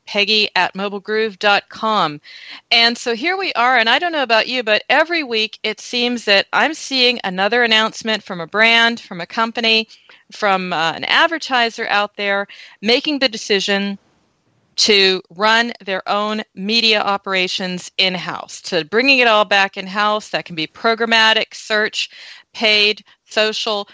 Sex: female